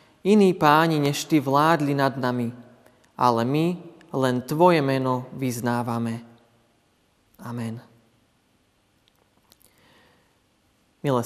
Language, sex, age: Slovak, male, 30-49